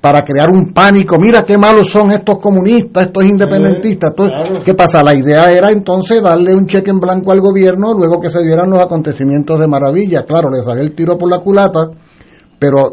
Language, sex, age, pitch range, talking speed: Spanish, male, 60-79, 125-170 Hz, 200 wpm